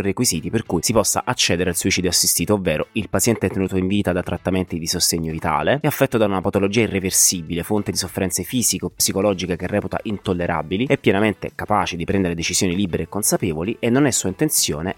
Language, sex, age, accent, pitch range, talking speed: Italian, male, 30-49, native, 90-115 Hz, 190 wpm